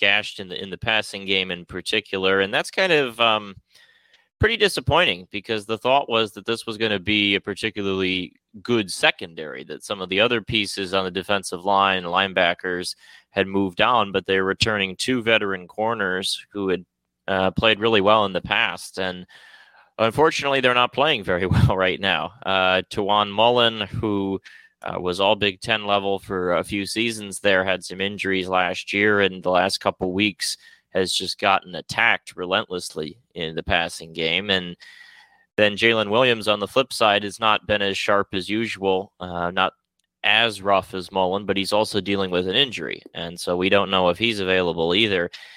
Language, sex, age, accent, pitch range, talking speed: English, male, 30-49, American, 95-110 Hz, 185 wpm